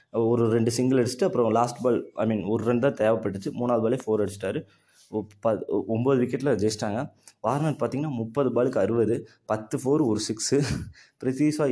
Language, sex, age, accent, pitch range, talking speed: Tamil, male, 20-39, native, 110-135 Hz, 155 wpm